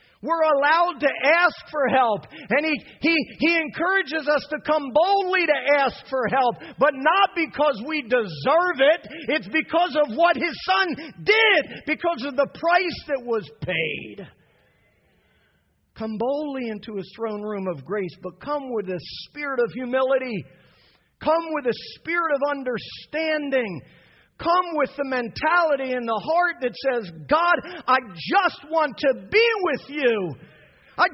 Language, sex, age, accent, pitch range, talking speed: English, male, 40-59, American, 255-350 Hz, 150 wpm